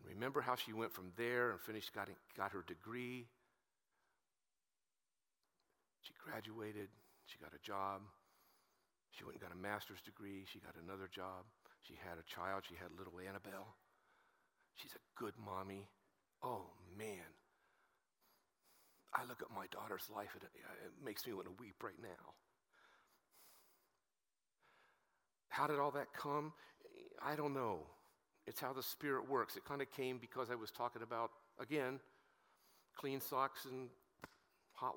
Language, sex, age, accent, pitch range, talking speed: English, male, 50-69, American, 100-140 Hz, 150 wpm